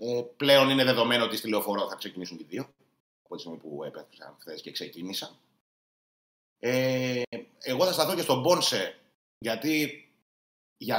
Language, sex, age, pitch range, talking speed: Greek, male, 30-49, 105-130 Hz, 155 wpm